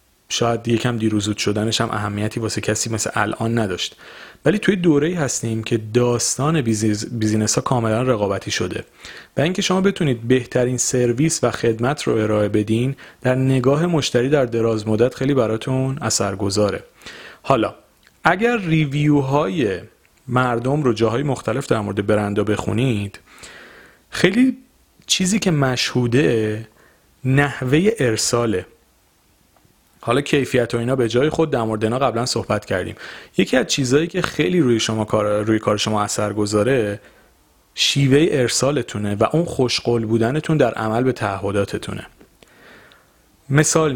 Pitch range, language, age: 110-140 Hz, Persian, 40-59